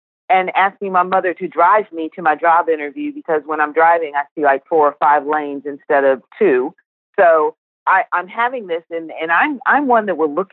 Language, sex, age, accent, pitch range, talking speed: English, female, 40-59, American, 150-200 Hz, 210 wpm